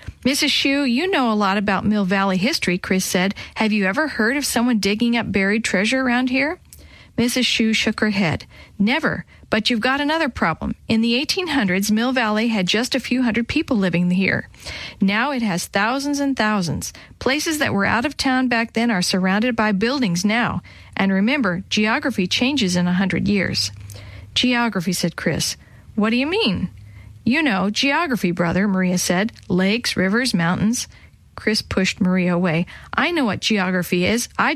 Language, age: English, 40-59